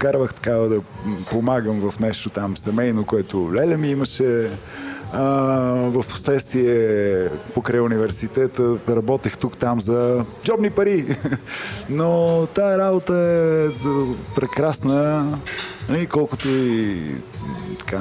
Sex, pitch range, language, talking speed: male, 115-145 Hz, Bulgarian, 105 wpm